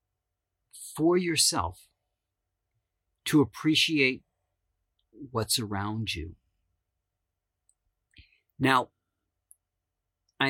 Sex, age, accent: male, 50-69, American